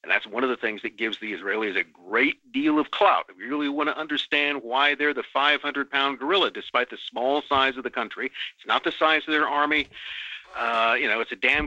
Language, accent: English, American